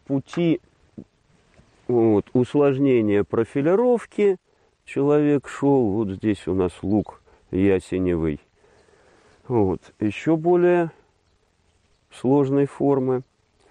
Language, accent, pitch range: Russian, native, 90-145 Hz